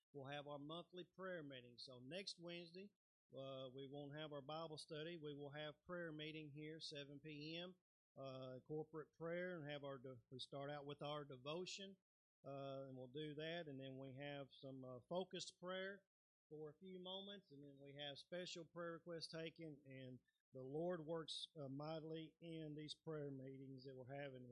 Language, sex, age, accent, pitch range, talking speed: English, male, 40-59, American, 140-165 Hz, 180 wpm